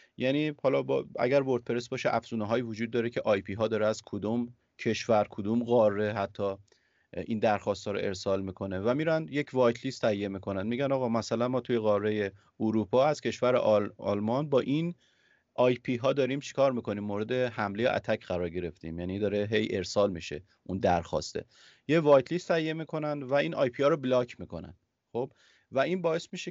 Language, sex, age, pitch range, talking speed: Persian, male, 30-49, 100-130 Hz, 185 wpm